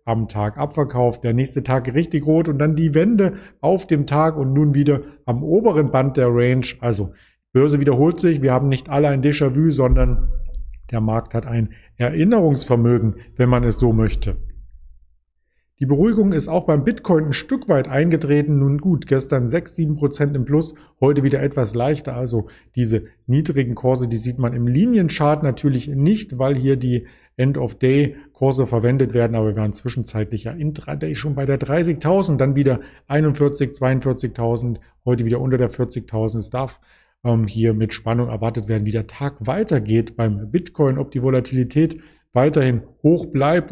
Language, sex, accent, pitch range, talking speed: German, male, German, 115-150 Hz, 165 wpm